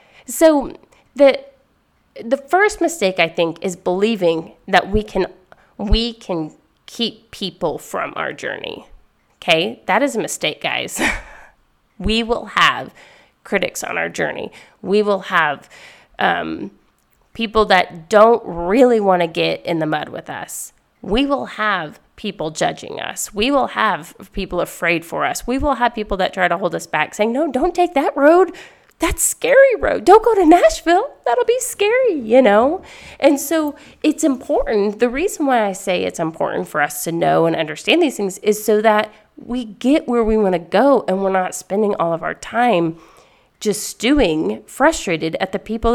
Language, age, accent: English, 30-49, American